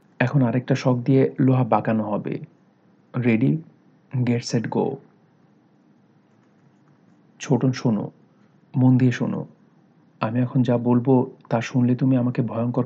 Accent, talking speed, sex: native, 90 wpm, male